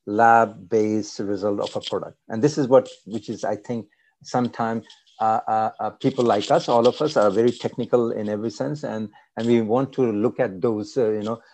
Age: 60-79